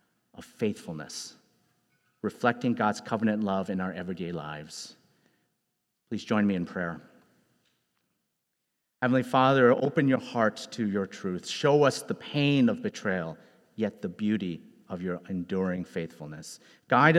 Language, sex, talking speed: English, male, 125 wpm